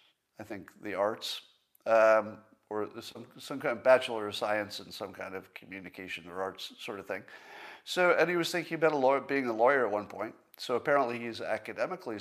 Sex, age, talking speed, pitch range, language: male, 50-69, 200 wpm, 105-145 Hz, English